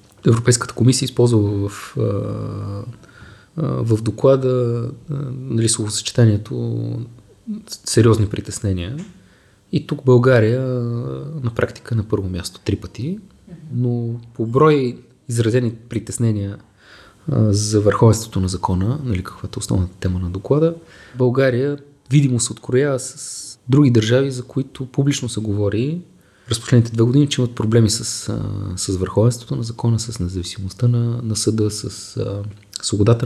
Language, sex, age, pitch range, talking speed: Bulgarian, male, 20-39, 105-130 Hz, 130 wpm